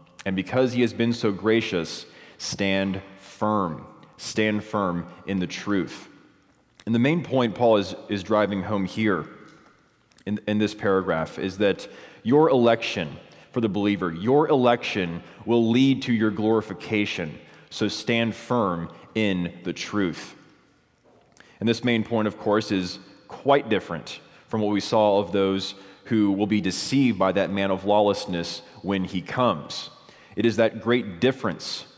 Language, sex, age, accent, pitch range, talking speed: English, male, 20-39, American, 100-110 Hz, 150 wpm